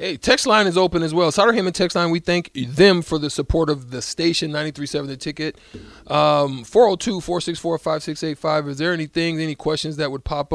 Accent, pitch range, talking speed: American, 120-155 Hz, 180 wpm